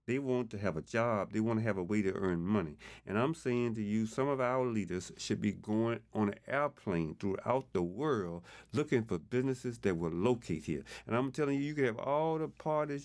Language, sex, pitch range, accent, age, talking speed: English, male, 90-130 Hz, American, 40-59, 230 wpm